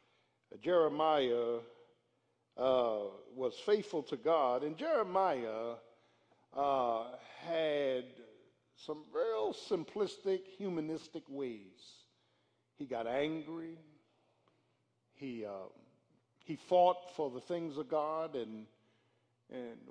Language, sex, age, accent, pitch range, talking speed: English, male, 60-79, American, 125-165 Hz, 85 wpm